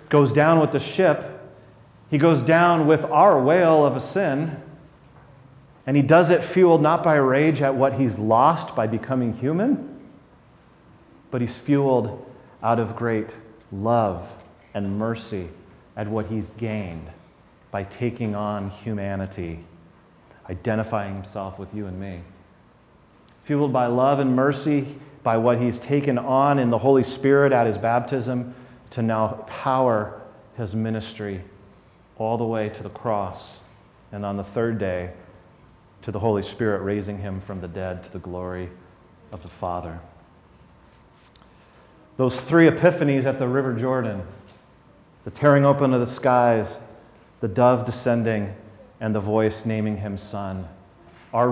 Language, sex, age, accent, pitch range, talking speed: English, male, 30-49, American, 100-135 Hz, 145 wpm